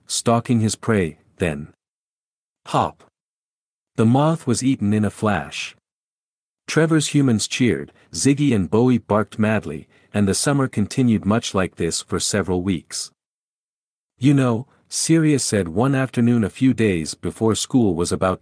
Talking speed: 140 wpm